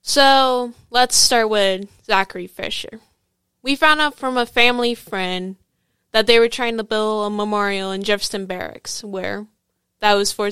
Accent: American